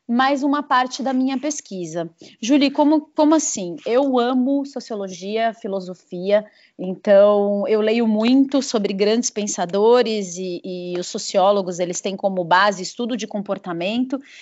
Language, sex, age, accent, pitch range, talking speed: Portuguese, female, 30-49, Brazilian, 210-265 Hz, 135 wpm